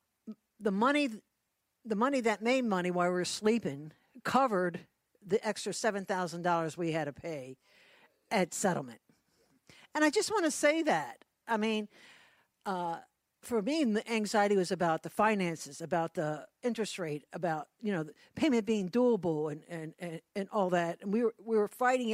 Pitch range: 175-225 Hz